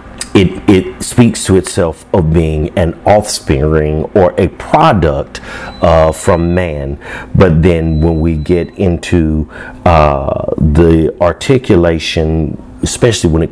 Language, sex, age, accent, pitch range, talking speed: English, male, 50-69, American, 75-90 Hz, 120 wpm